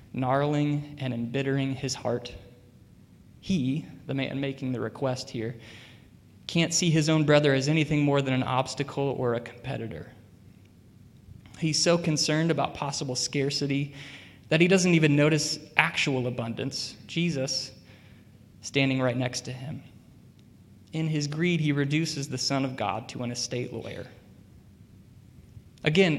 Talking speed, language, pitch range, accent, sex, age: 135 wpm, English, 120-150 Hz, American, male, 20-39